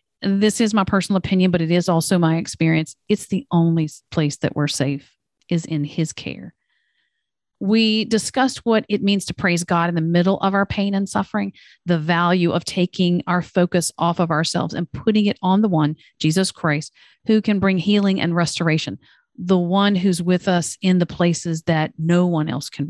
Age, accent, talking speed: 40-59, American, 195 wpm